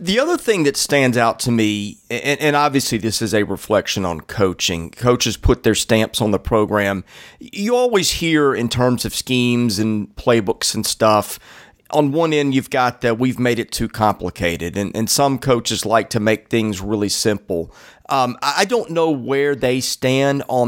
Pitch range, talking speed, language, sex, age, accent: 115-150 Hz, 180 wpm, English, male, 40-59, American